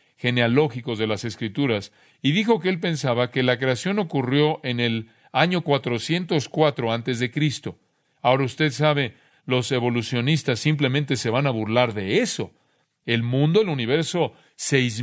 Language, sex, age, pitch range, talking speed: Spanish, male, 40-59, 120-155 Hz, 150 wpm